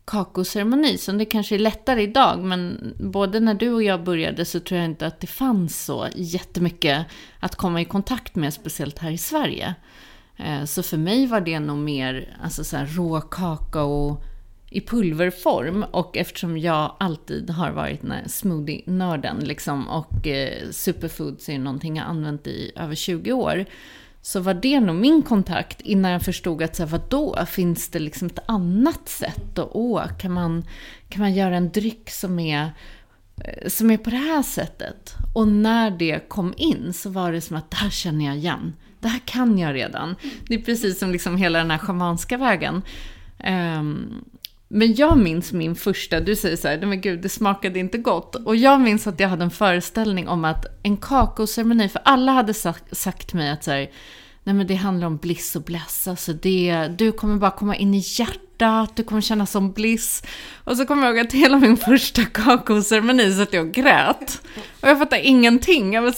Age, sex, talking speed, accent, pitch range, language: 30-49, female, 185 wpm, native, 170-230 Hz, Swedish